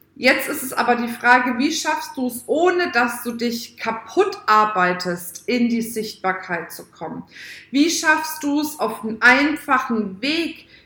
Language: German